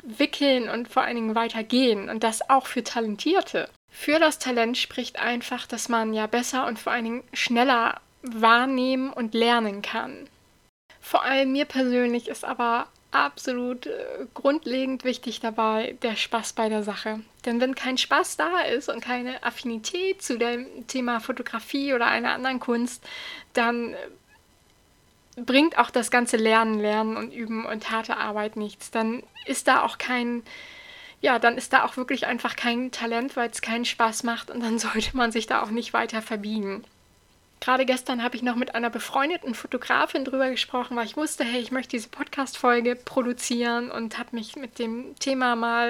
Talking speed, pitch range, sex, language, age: 170 wpm, 230-260 Hz, female, German, 20-39